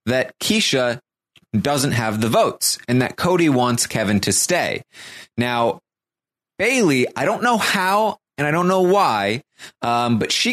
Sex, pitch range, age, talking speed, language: male, 105-145 Hz, 30-49, 155 wpm, English